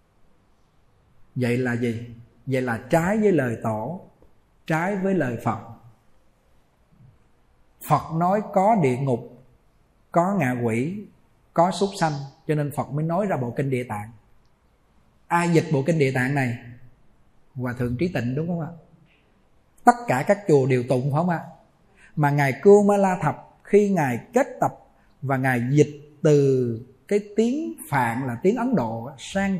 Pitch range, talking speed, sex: 130-195 Hz, 160 wpm, male